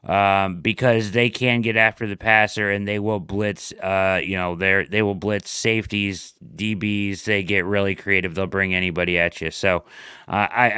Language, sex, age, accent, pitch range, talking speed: English, male, 30-49, American, 95-115 Hz, 185 wpm